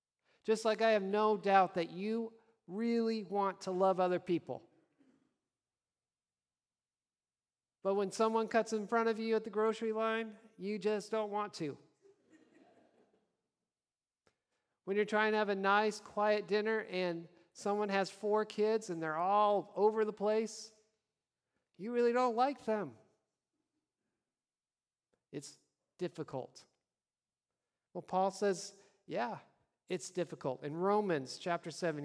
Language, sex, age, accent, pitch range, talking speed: English, male, 40-59, American, 170-220 Hz, 125 wpm